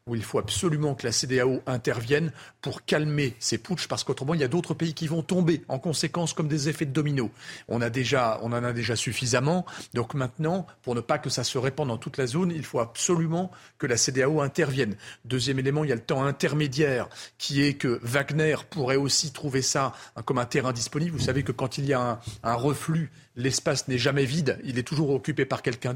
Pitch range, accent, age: 130-160 Hz, French, 40-59